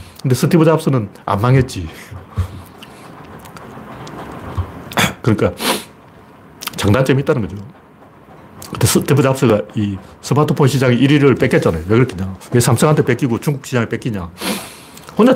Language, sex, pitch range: Korean, male, 100-160 Hz